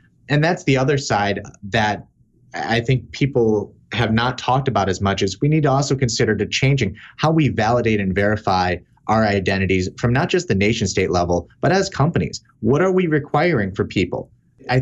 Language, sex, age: English, male, 30-49